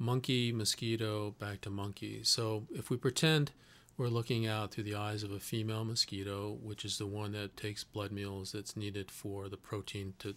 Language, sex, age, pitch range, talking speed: English, male, 40-59, 105-115 Hz, 190 wpm